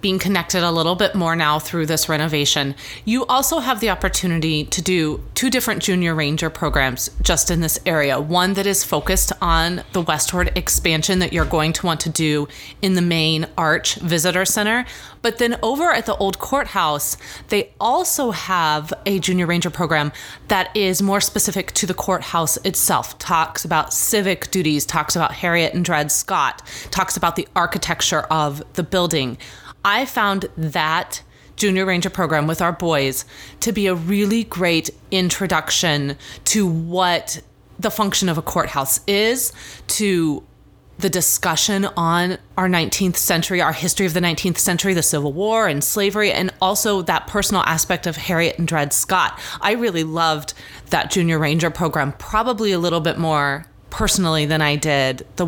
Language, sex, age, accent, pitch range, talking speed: English, female, 30-49, American, 155-195 Hz, 165 wpm